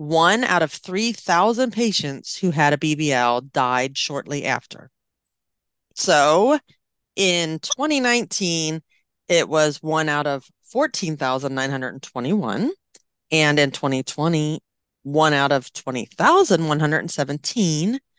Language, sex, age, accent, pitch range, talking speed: English, female, 30-49, American, 135-190 Hz, 90 wpm